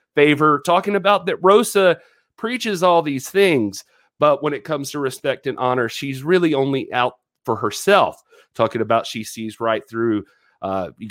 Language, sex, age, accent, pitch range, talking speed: English, male, 40-59, American, 120-165 Hz, 165 wpm